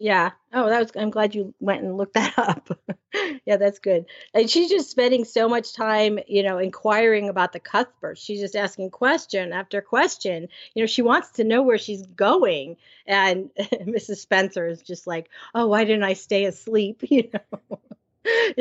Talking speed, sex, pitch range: 185 wpm, female, 185-235 Hz